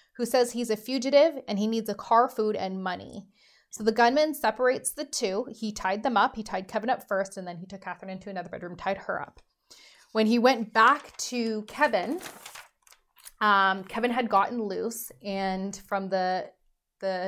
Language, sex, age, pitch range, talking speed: English, female, 20-39, 195-235 Hz, 190 wpm